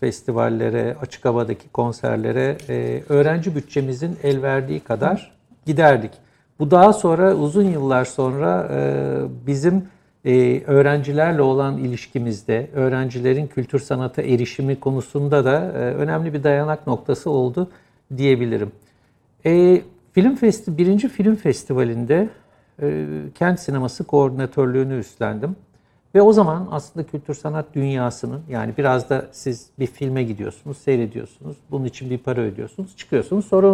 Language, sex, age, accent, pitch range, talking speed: Turkish, male, 60-79, native, 125-165 Hz, 110 wpm